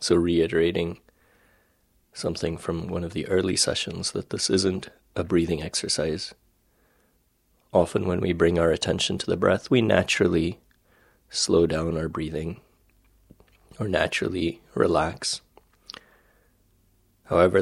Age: 30-49